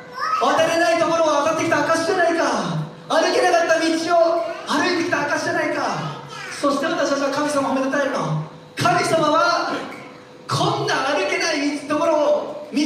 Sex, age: male, 40-59